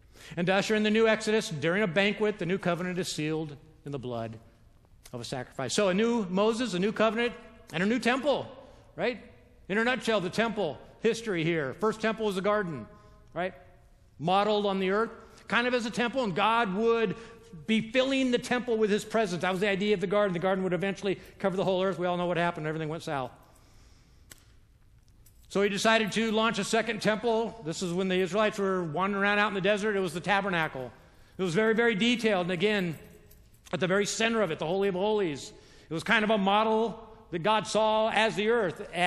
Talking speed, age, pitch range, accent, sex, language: 220 wpm, 50-69, 150-215 Hz, American, male, English